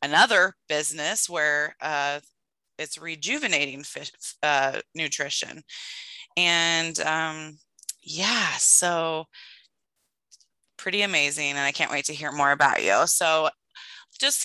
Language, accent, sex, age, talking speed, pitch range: English, American, female, 20-39, 105 wpm, 155-205 Hz